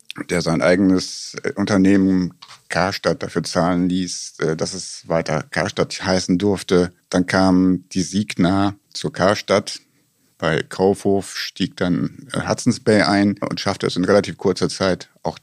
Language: German